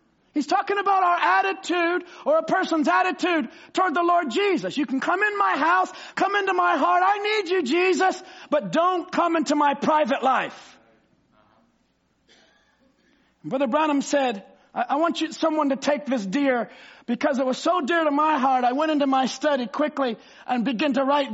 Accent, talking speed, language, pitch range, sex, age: American, 180 wpm, English, 290-370 Hz, male, 40-59